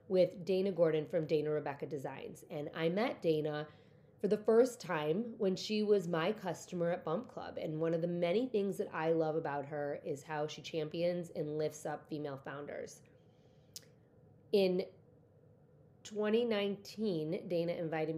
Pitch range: 150-180 Hz